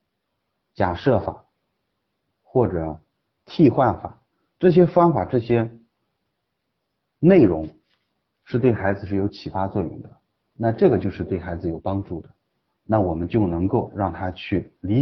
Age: 30-49